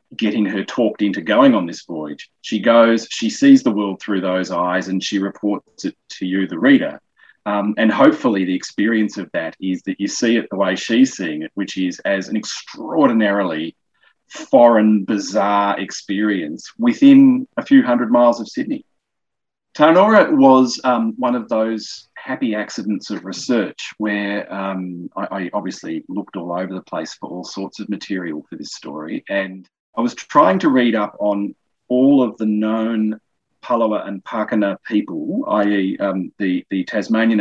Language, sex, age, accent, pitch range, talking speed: English, male, 40-59, Australian, 95-125 Hz, 170 wpm